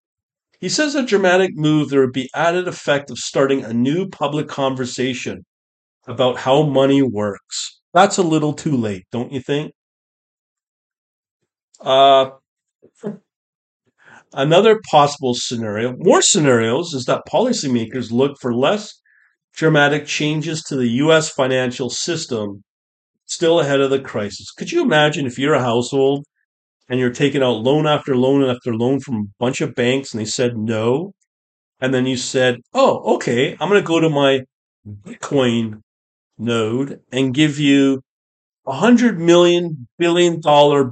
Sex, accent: male, American